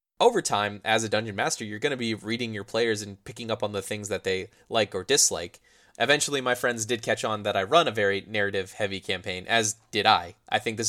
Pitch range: 100-125 Hz